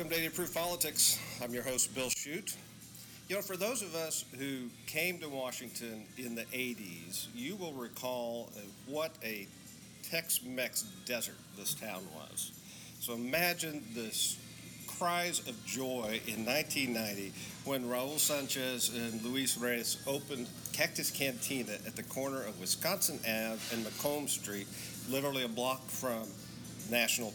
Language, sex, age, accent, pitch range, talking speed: English, male, 50-69, American, 115-145 Hz, 140 wpm